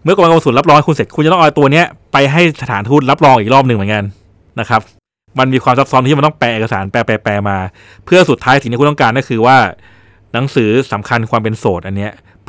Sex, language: male, Thai